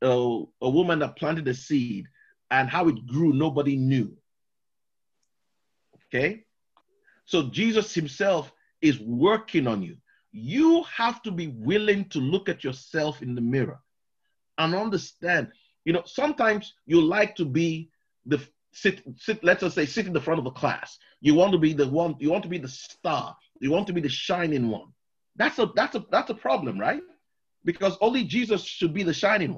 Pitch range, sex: 145-205 Hz, male